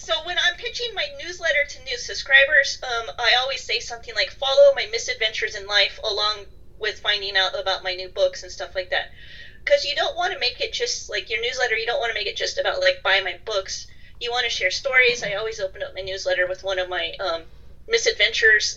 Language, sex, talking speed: English, female, 230 wpm